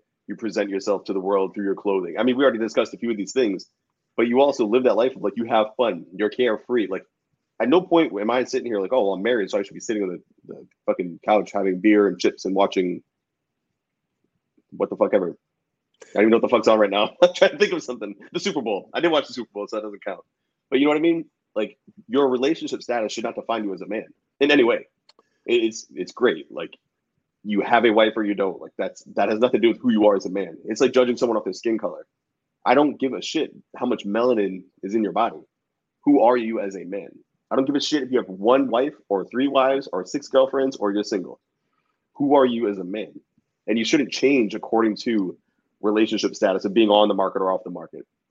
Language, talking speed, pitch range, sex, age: English, 255 wpm, 105-135 Hz, male, 30-49